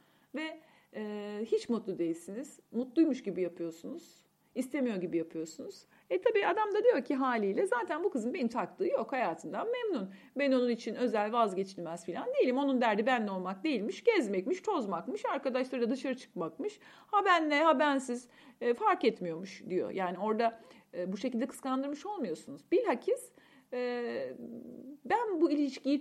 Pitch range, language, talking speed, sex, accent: 195-275 Hz, Turkish, 145 wpm, female, native